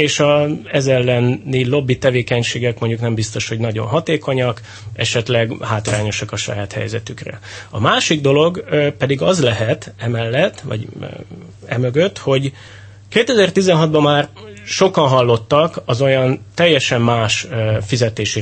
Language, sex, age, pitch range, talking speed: Hungarian, male, 30-49, 110-150 Hz, 115 wpm